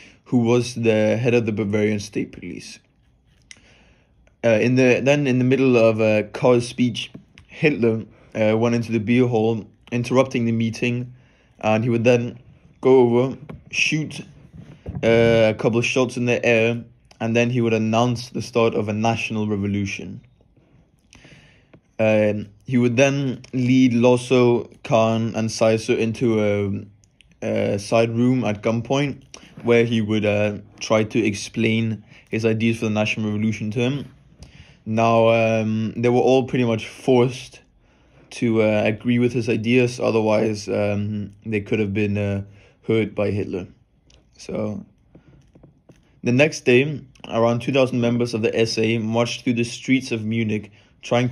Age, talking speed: 20-39, 150 wpm